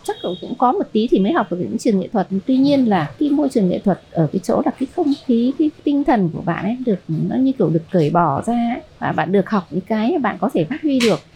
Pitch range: 190-260 Hz